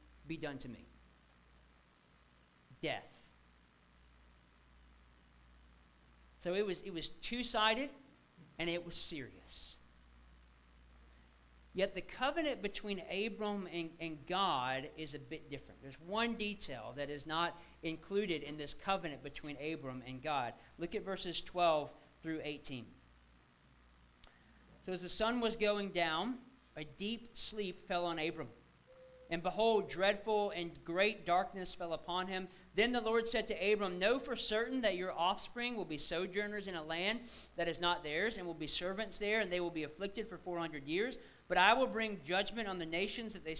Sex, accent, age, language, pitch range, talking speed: male, American, 40-59, English, 135-200 Hz, 155 wpm